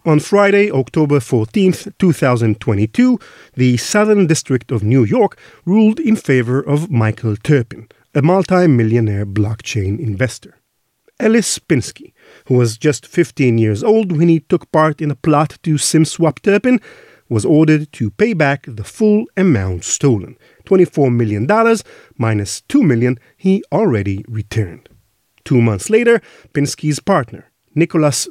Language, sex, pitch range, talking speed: English, male, 115-180 Hz, 130 wpm